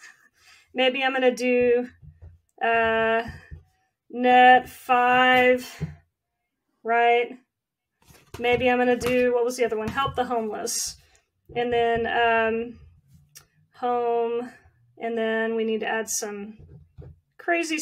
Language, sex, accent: English, female, American